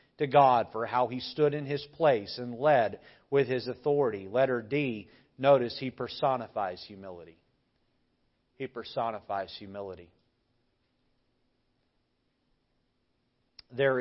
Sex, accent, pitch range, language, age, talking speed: male, American, 110-135 Hz, English, 40-59, 105 wpm